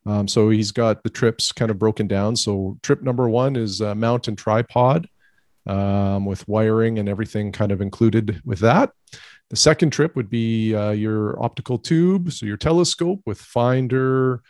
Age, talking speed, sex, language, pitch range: 40-59, 175 wpm, male, English, 105-130 Hz